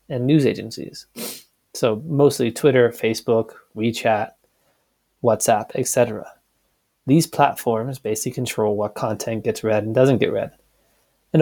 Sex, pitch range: male, 115-145 Hz